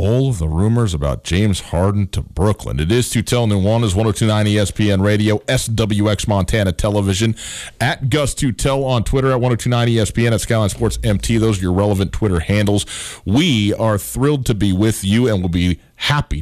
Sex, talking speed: male, 185 wpm